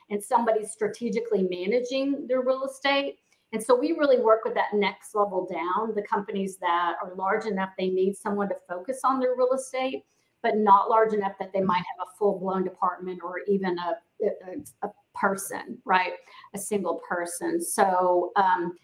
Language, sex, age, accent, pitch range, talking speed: English, female, 40-59, American, 195-250 Hz, 180 wpm